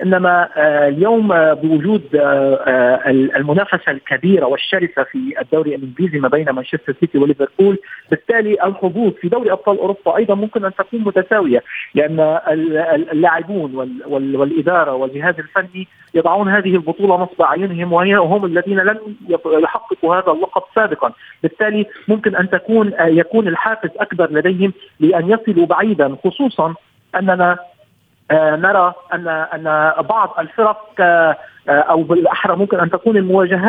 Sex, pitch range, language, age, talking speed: male, 160-205 Hz, Arabic, 40-59, 135 wpm